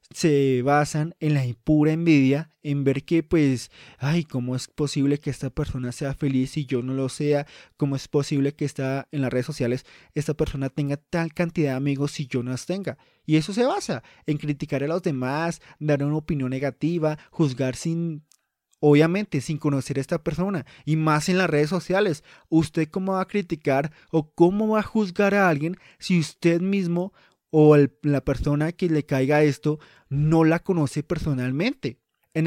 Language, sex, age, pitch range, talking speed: Spanish, male, 20-39, 140-170 Hz, 185 wpm